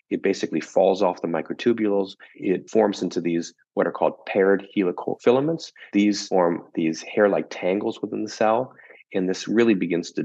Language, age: English, 30-49